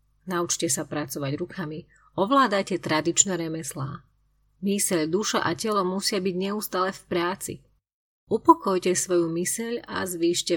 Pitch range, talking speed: 175-220 Hz, 120 wpm